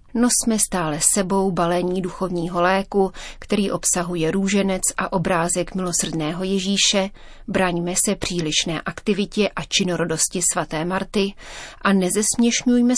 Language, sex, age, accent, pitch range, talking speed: Czech, female, 30-49, native, 175-200 Hz, 105 wpm